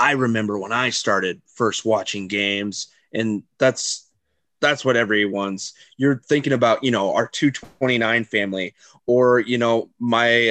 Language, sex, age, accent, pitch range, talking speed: English, male, 30-49, American, 110-130 Hz, 155 wpm